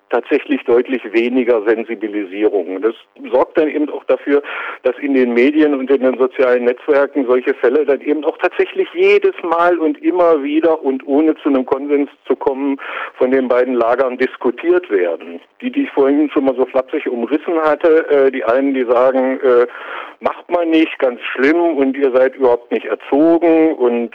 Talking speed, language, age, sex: 175 wpm, German, 50-69, male